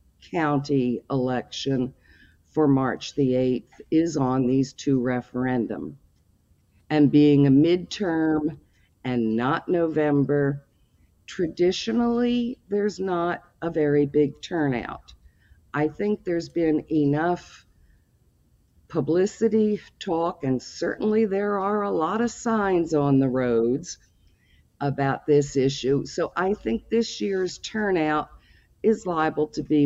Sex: female